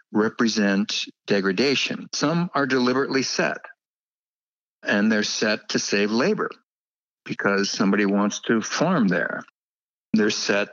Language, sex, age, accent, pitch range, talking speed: English, male, 60-79, American, 100-120 Hz, 110 wpm